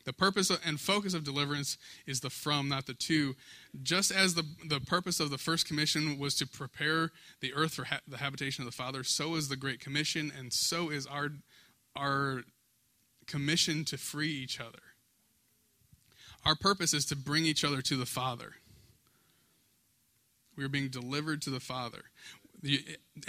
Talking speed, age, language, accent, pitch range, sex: 170 wpm, 20-39, English, American, 125-150 Hz, male